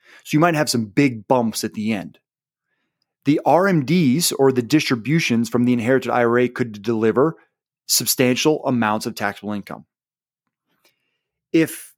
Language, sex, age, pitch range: English, male, 30-49, 115-155 Hz